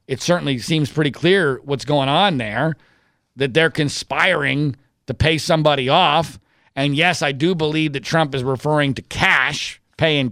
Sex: male